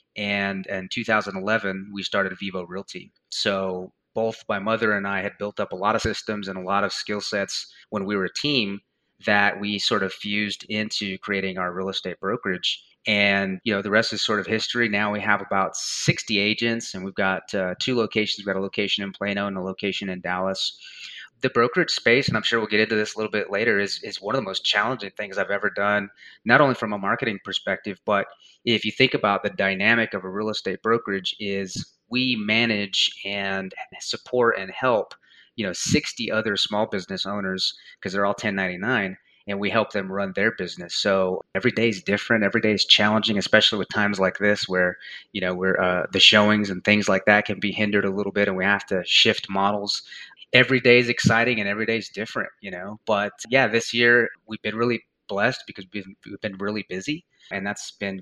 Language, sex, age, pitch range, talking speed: English, male, 30-49, 95-110 Hz, 215 wpm